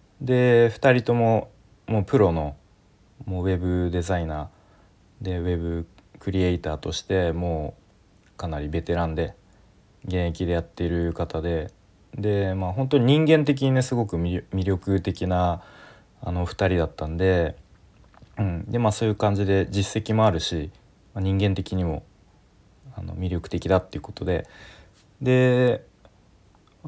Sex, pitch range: male, 85-110 Hz